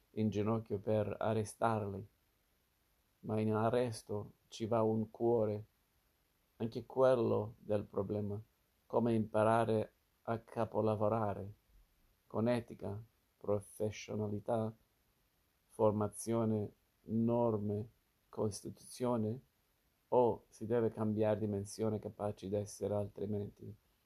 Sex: male